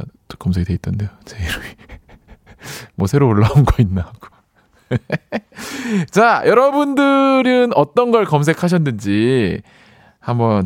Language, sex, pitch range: Korean, male, 100-165 Hz